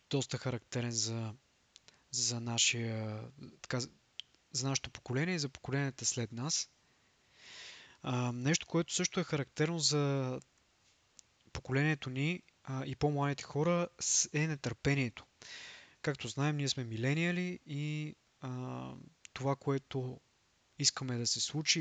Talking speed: 105 wpm